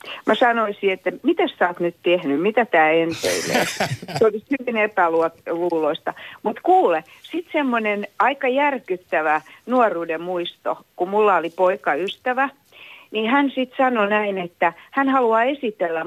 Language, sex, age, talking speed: Finnish, female, 60-79, 140 wpm